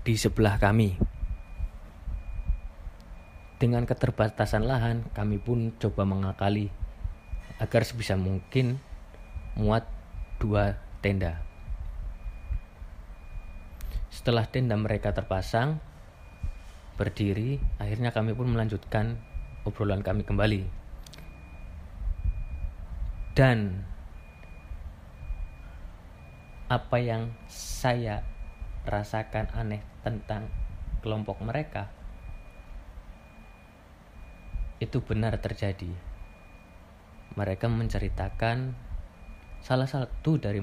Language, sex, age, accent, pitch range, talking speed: English, male, 20-39, Indonesian, 80-110 Hz, 65 wpm